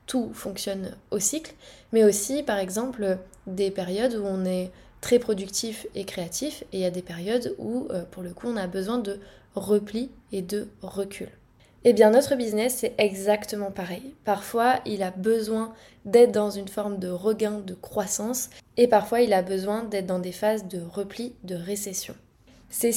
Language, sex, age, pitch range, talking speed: French, female, 20-39, 195-235 Hz, 180 wpm